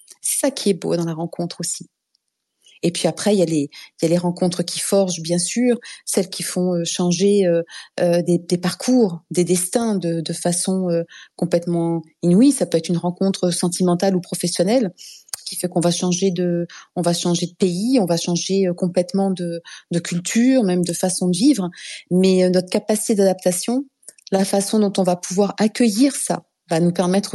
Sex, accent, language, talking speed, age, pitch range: female, French, French, 195 wpm, 30-49, 175-225 Hz